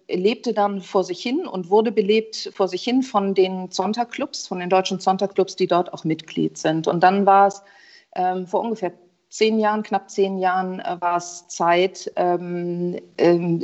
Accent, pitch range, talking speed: German, 175-215 Hz, 175 wpm